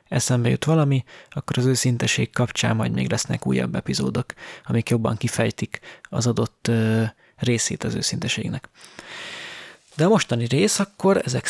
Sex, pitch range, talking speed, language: male, 120-145 Hz, 135 wpm, Hungarian